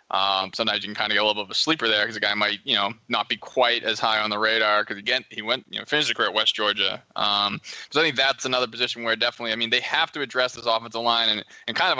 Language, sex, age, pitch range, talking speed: English, male, 20-39, 105-120 Hz, 315 wpm